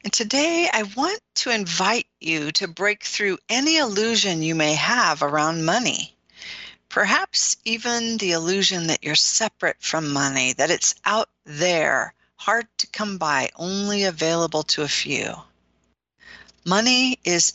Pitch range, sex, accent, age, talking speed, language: 150-205 Hz, female, American, 50-69, 140 wpm, English